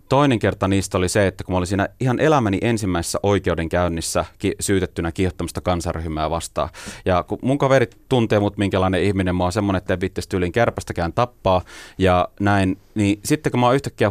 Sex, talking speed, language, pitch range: male, 185 wpm, Finnish, 90-105 Hz